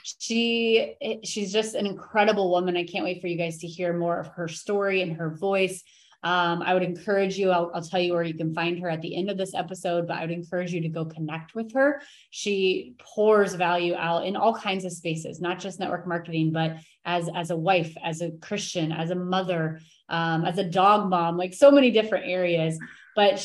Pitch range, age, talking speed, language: 175-215 Hz, 20-39, 220 wpm, English